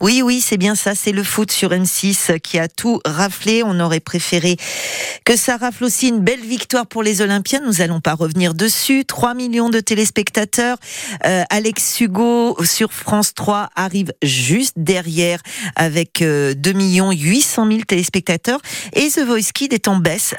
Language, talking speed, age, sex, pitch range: French, 170 wpm, 40-59, female, 180-225 Hz